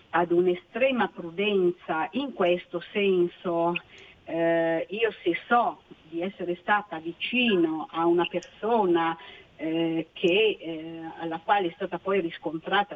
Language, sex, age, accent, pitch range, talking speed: Italian, female, 50-69, native, 165-205 Hz, 120 wpm